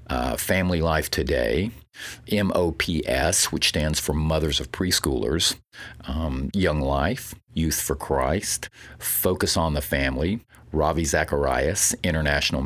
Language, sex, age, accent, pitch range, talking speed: English, male, 50-69, American, 75-90 Hz, 115 wpm